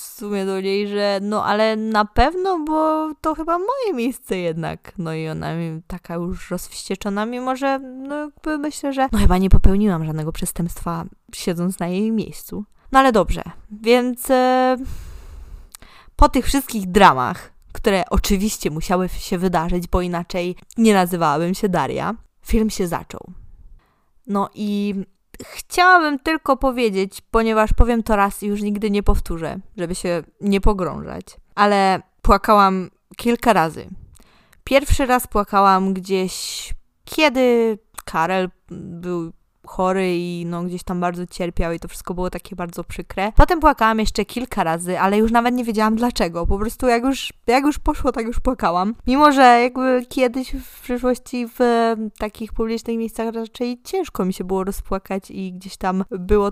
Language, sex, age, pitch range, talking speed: Polish, female, 20-39, 185-245 Hz, 155 wpm